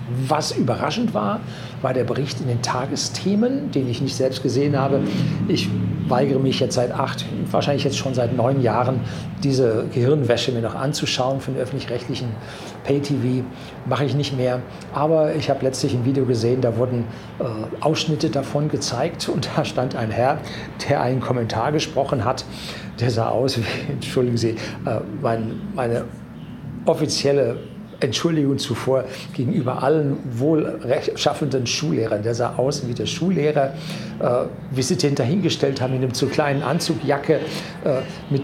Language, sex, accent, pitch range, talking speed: German, male, German, 125-160 Hz, 150 wpm